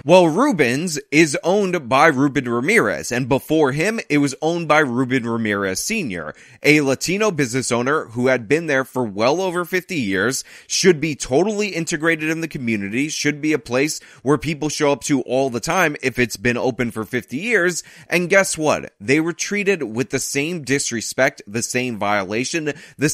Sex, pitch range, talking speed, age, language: male, 125-160 Hz, 180 wpm, 20-39, English